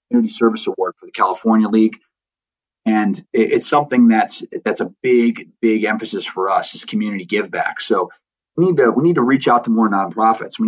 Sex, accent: male, American